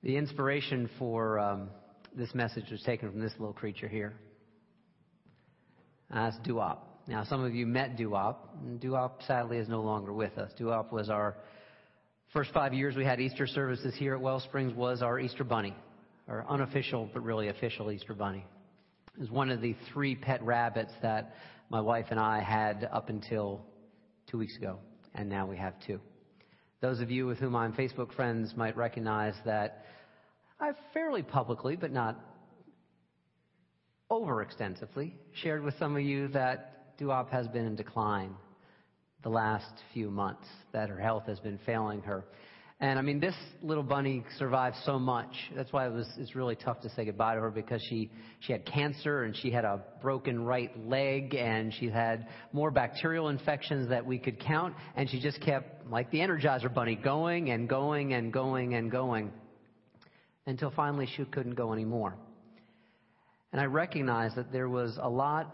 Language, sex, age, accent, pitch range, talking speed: English, male, 40-59, American, 110-135 Hz, 175 wpm